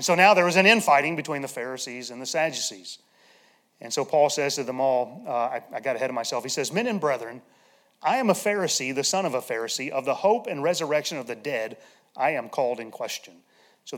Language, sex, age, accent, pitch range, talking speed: English, male, 30-49, American, 135-195 Hz, 235 wpm